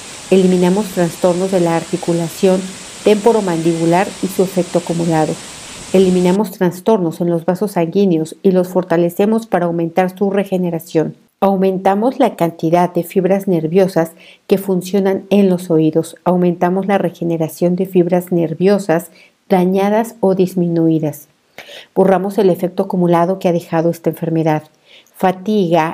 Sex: female